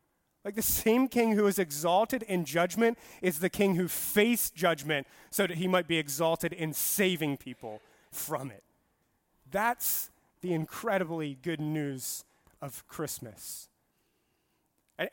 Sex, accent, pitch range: male, American, 140-190 Hz